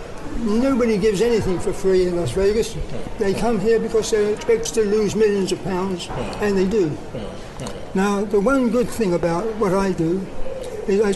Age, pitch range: 60-79, 190-230 Hz